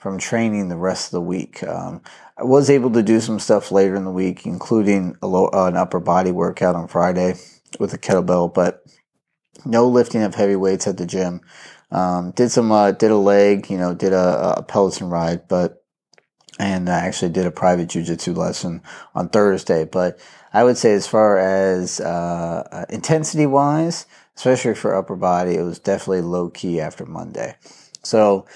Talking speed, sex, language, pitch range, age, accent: 180 wpm, male, English, 90-110 Hz, 30-49, American